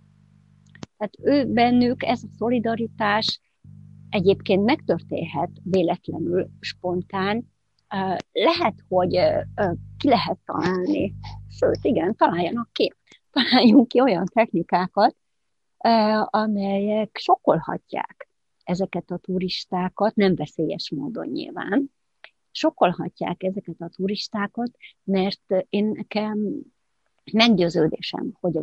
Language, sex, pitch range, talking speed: Hungarian, female, 180-220 Hz, 85 wpm